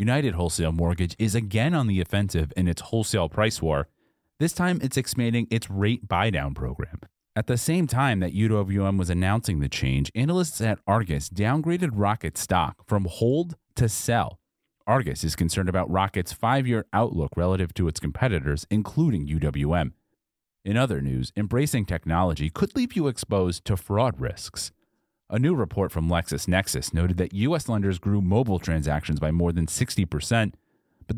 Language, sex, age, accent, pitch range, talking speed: English, male, 30-49, American, 85-120 Hz, 160 wpm